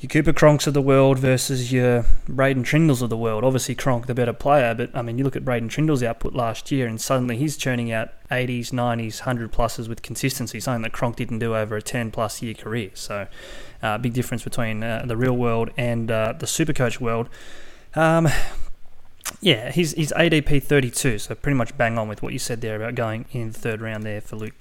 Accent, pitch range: Australian, 115-140 Hz